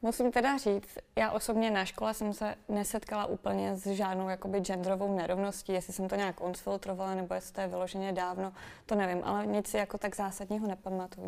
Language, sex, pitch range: Czech, female, 185-205 Hz